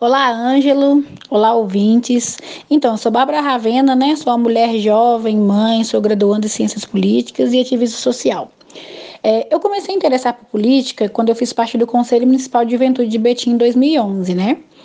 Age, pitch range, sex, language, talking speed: 10-29, 225-255 Hz, female, Portuguese, 180 wpm